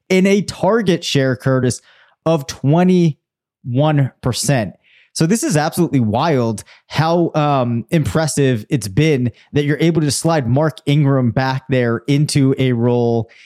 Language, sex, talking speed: English, male, 130 wpm